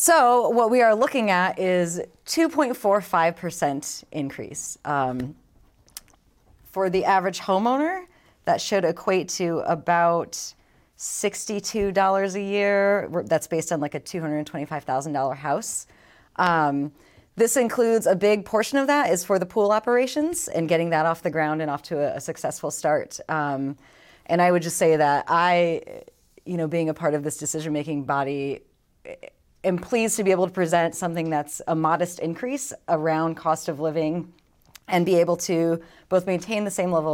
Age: 30-49